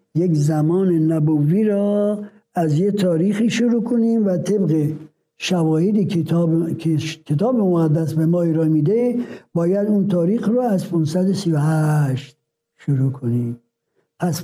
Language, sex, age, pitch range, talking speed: Persian, male, 60-79, 155-210 Hz, 120 wpm